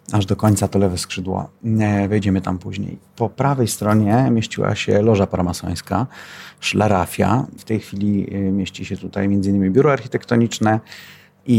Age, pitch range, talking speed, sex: 30-49, 95-110 Hz, 145 wpm, male